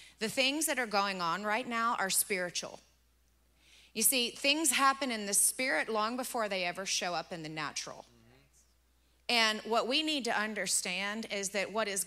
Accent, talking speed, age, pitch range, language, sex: American, 180 wpm, 30-49, 175-240 Hz, English, female